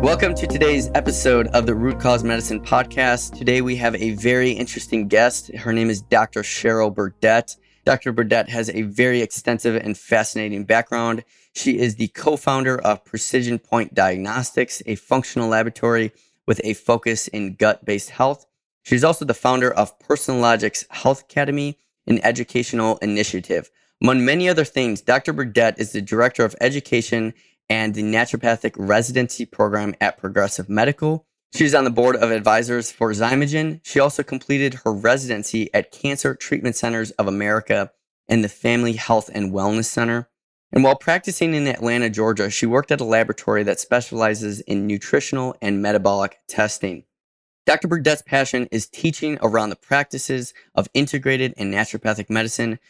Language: English